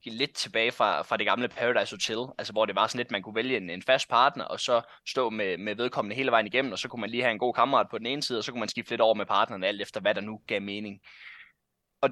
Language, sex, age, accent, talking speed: Danish, male, 20-39, native, 300 wpm